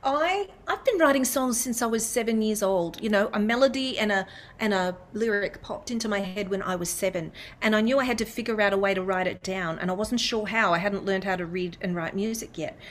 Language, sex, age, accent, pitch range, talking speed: English, female, 40-59, Australian, 200-275 Hz, 265 wpm